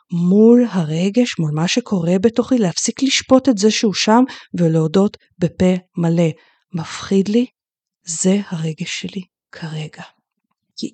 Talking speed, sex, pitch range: 120 wpm, female, 175-230 Hz